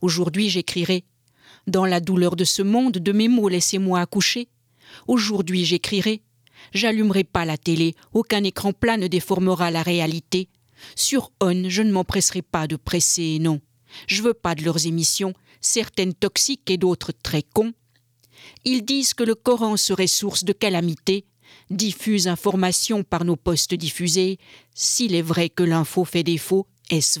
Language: French